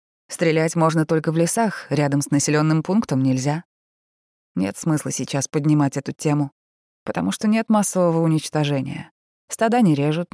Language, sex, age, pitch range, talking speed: Russian, female, 20-39, 145-185 Hz, 140 wpm